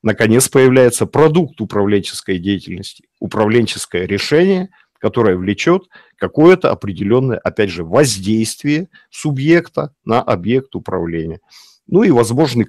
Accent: native